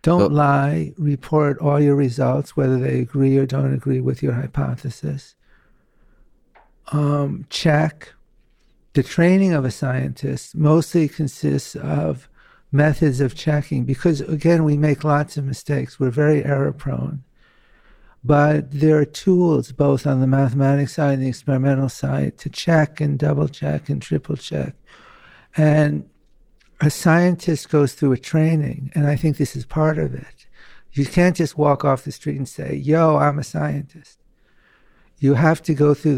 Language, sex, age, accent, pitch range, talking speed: English, male, 60-79, American, 135-155 Hz, 150 wpm